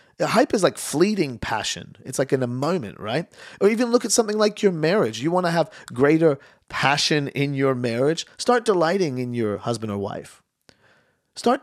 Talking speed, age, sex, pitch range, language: 185 wpm, 40-59, male, 110-160 Hz, English